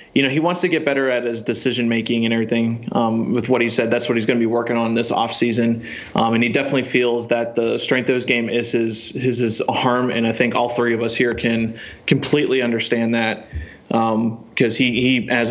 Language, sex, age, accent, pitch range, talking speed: English, male, 20-39, American, 115-125 Hz, 235 wpm